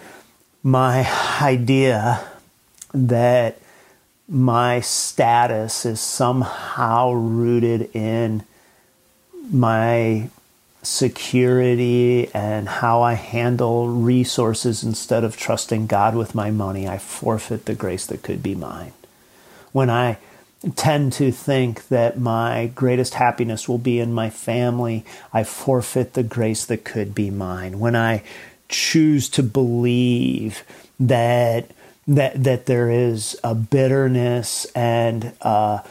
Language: English